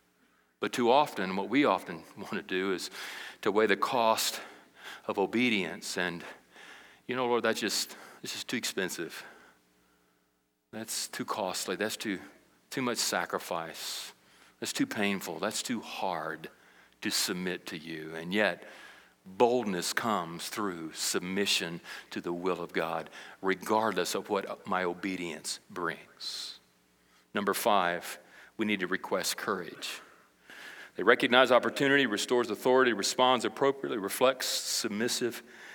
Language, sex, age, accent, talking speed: English, male, 40-59, American, 130 wpm